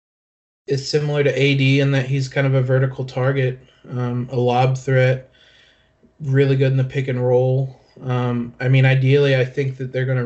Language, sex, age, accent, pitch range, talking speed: English, male, 20-39, American, 125-135 Hz, 185 wpm